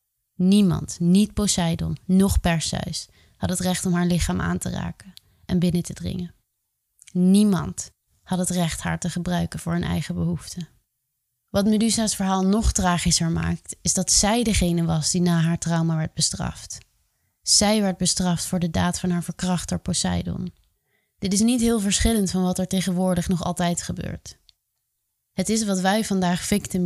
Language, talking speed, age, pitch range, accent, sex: Dutch, 165 wpm, 20-39, 160-185 Hz, Dutch, female